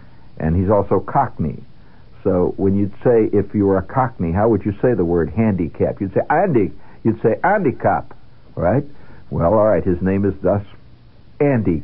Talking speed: 180 wpm